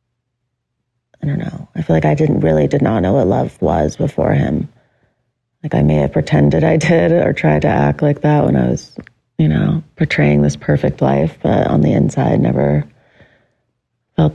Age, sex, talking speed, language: 30-49, female, 190 wpm, English